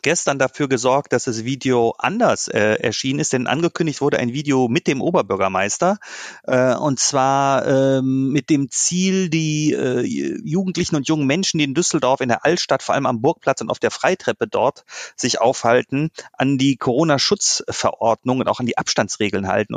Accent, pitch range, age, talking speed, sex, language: German, 125-160 Hz, 30-49, 175 wpm, male, German